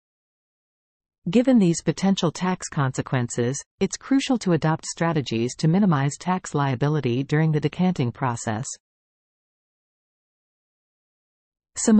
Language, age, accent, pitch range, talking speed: English, 40-59, American, 125-185 Hz, 95 wpm